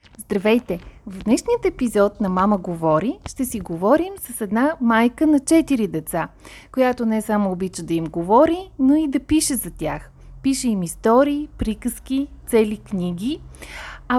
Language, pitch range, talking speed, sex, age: Bulgarian, 210-290 Hz, 150 wpm, female, 30-49